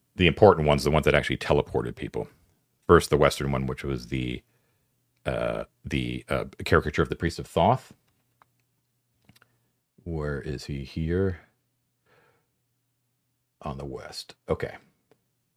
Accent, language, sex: American, English, male